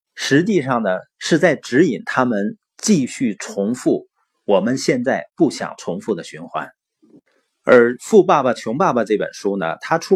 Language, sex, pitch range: Chinese, male, 125-190 Hz